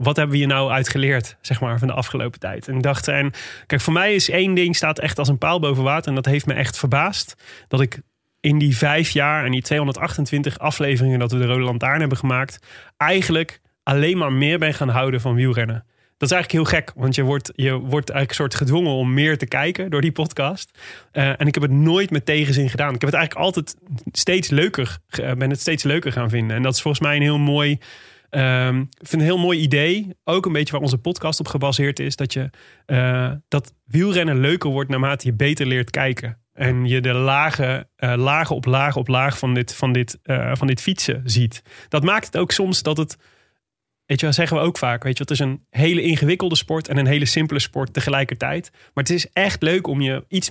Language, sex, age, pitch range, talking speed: Dutch, male, 30-49, 130-155 Hz, 225 wpm